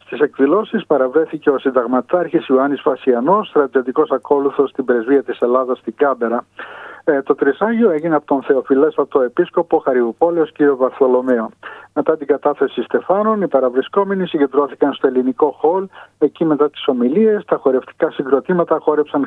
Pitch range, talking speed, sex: 135-180 Hz, 135 wpm, male